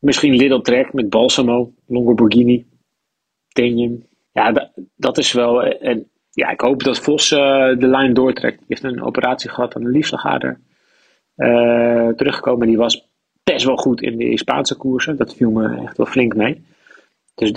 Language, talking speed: Dutch, 160 wpm